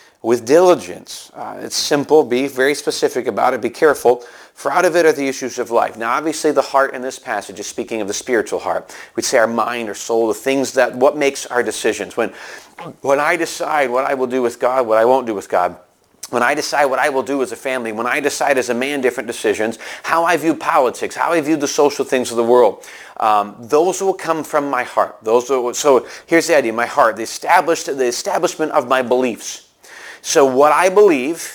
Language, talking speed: English, 225 wpm